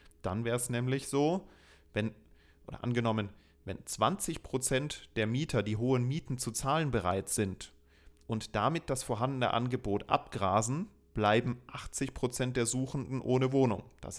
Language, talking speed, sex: German, 135 wpm, male